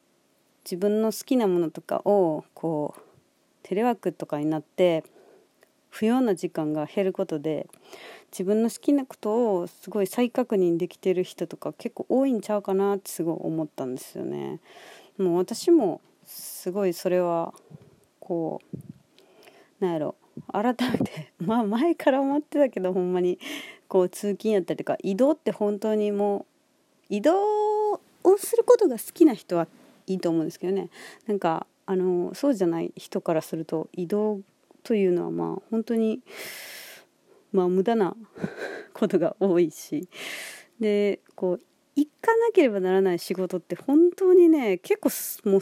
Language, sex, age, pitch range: Japanese, female, 40-59, 180-280 Hz